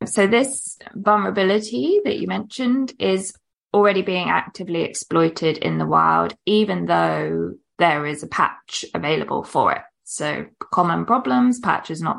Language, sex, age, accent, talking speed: English, female, 20-39, British, 140 wpm